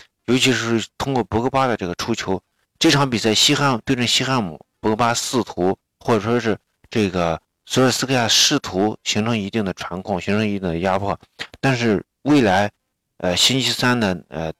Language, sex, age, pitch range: Chinese, male, 50-69, 90-125 Hz